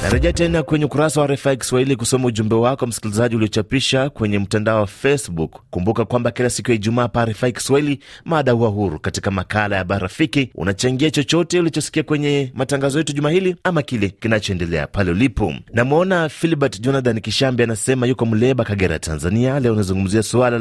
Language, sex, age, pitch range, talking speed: Swahili, male, 30-49, 110-150 Hz, 165 wpm